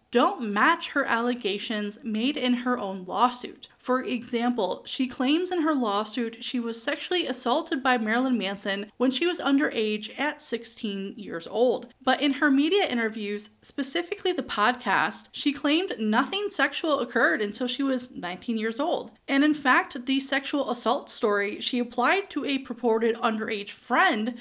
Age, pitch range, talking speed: 20-39, 220-285 Hz, 155 wpm